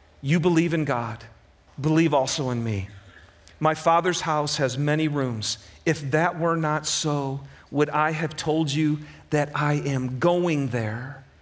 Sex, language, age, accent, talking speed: male, English, 40-59, American, 150 wpm